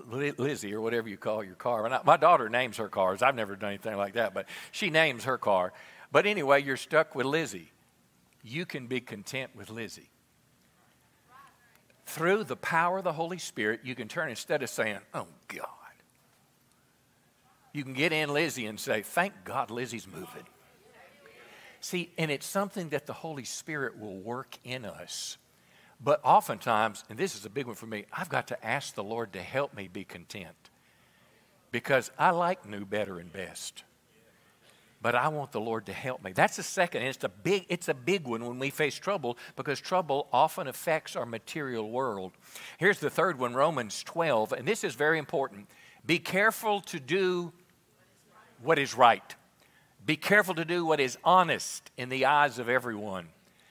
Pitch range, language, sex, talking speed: 115-165 Hz, English, male, 180 wpm